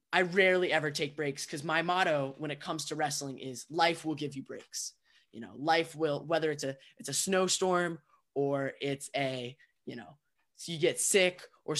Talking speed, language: 200 wpm, English